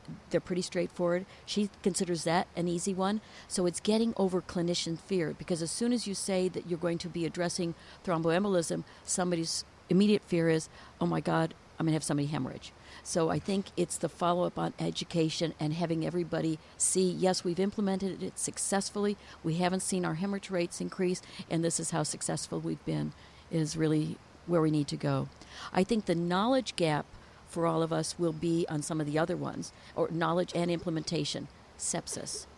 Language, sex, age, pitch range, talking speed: English, female, 50-69, 160-185 Hz, 190 wpm